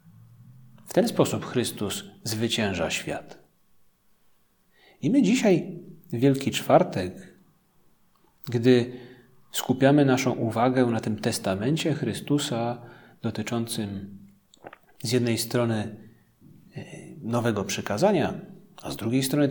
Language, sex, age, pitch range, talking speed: Polish, male, 40-59, 120-180 Hz, 90 wpm